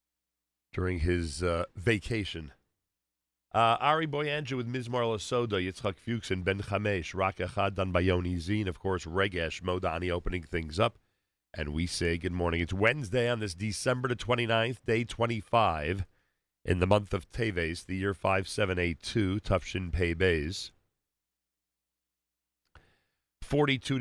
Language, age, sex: English, 40-59, male